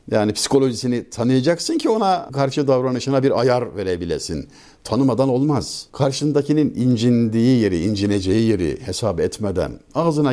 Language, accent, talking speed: Turkish, native, 115 wpm